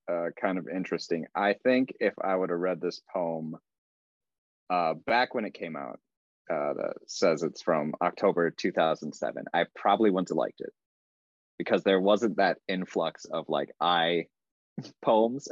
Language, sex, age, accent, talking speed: English, male, 30-49, American, 165 wpm